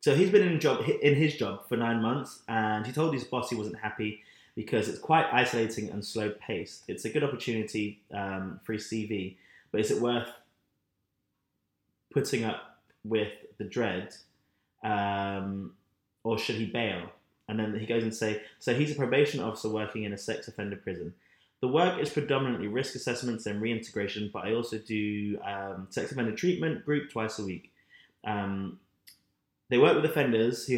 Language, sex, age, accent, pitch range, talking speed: English, male, 20-39, British, 105-130 Hz, 175 wpm